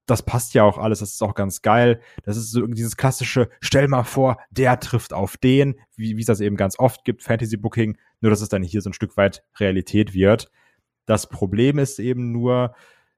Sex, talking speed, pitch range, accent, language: male, 215 wpm, 100-120 Hz, German, German